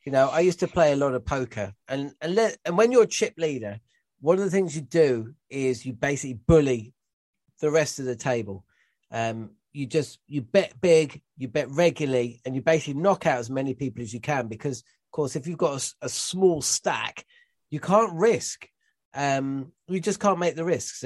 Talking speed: 210 wpm